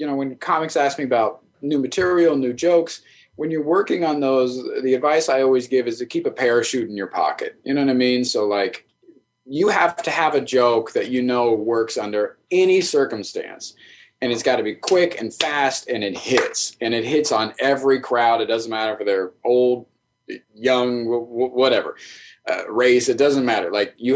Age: 30-49